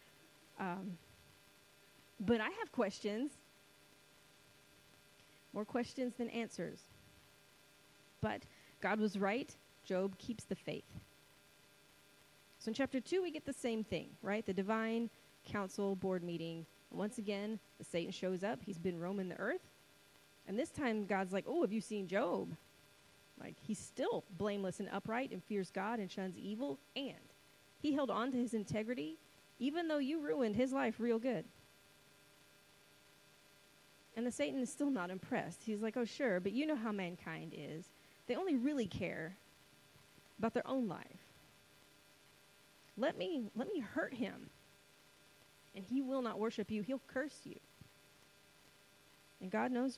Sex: female